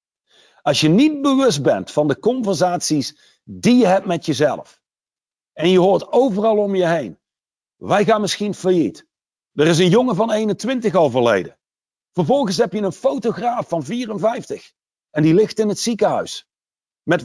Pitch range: 155-220 Hz